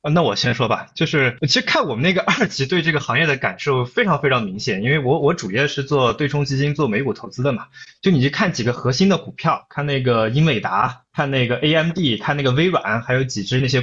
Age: 20-39